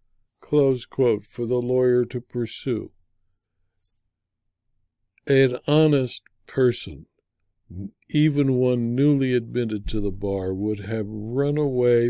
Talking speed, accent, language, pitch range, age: 105 wpm, American, English, 105-135 Hz, 60-79